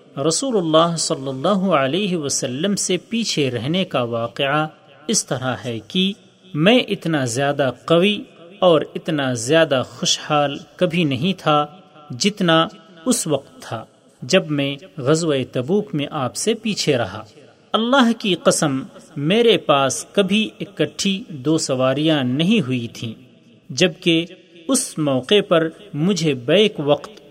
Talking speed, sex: 125 wpm, male